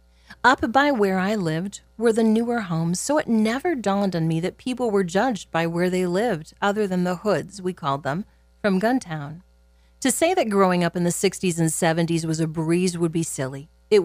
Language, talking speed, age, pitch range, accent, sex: English, 210 wpm, 40-59, 165-205 Hz, American, female